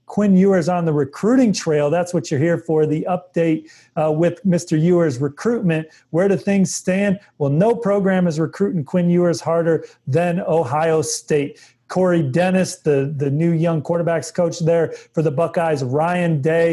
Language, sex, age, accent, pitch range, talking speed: English, male, 40-59, American, 155-175 Hz, 170 wpm